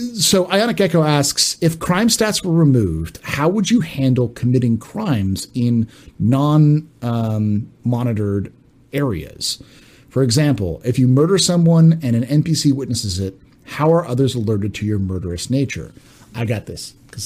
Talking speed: 145 wpm